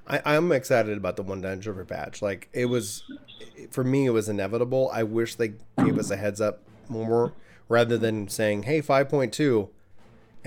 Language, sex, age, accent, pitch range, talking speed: English, male, 30-49, American, 105-125 Hz, 170 wpm